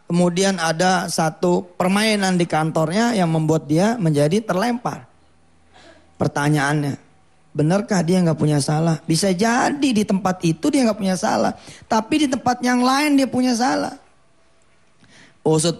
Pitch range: 145-175 Hz